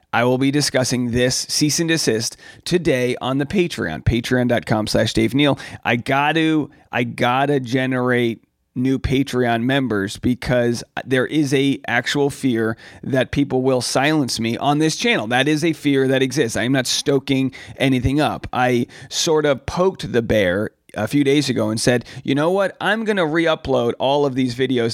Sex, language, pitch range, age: male, English, 115-145 Hz, 30-49